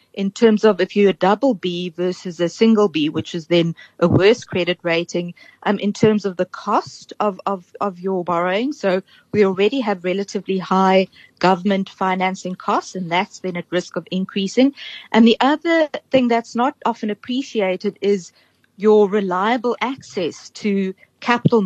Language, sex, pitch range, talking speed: English, female, 180-215 Hz, 165 wpm